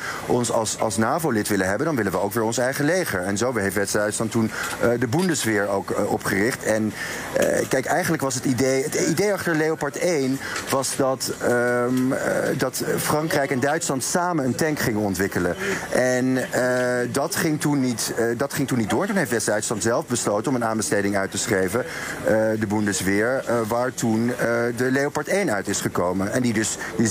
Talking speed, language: 205 wpm, Dutch